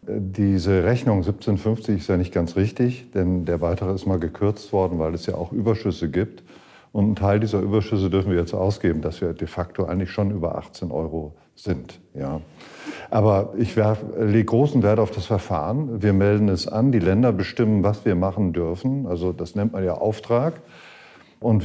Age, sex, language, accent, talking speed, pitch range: 50-69, male, German, German, 185 wpm, 90-110 Hz